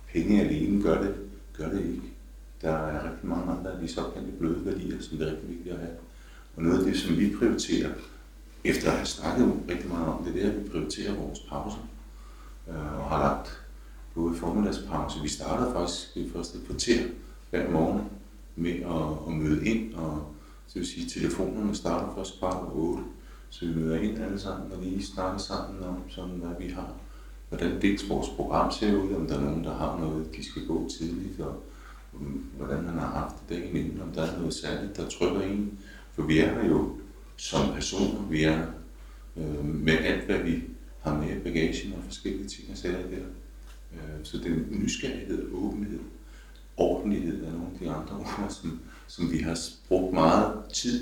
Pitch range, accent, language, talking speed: 75-95 Hz, native, Danish, 200 wpm